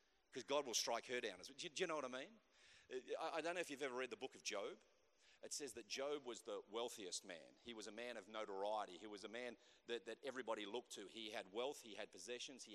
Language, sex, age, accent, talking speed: English, male, 40-59, Australian, 250 wpm